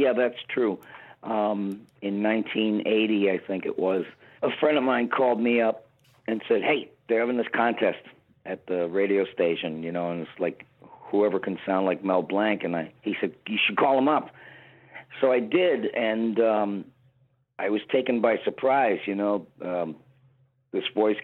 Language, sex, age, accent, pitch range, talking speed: English, male, 50-69, American, 95-115 Hz, 180 wpm